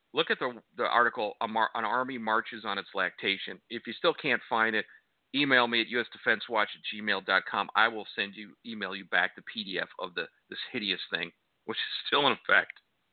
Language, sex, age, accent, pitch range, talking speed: English, male, 50-69, American, 105-140 Hz, 190 wpm